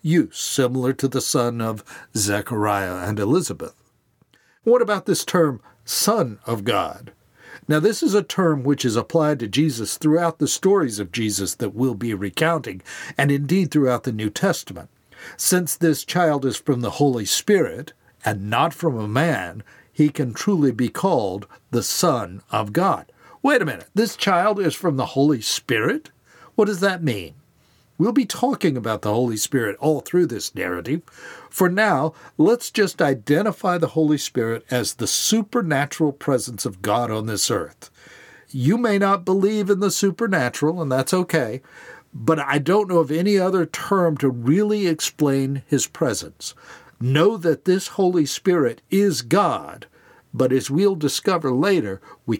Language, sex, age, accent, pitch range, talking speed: English, male, 60-79, American, 120-180 Hz, 160 wpm